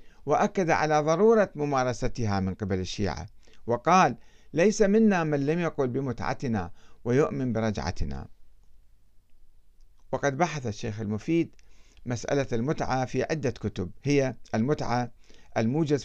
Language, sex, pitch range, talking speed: Arabic, male, 105-150 Hz, 105 wpm